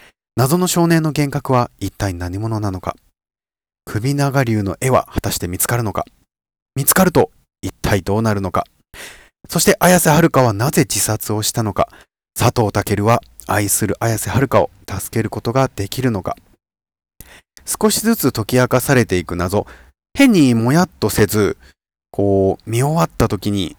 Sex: male